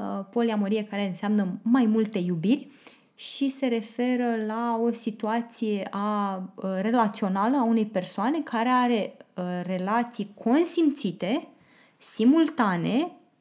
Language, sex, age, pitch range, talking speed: Romanian, female, 20-39, 200-255 Hz, 95 wpm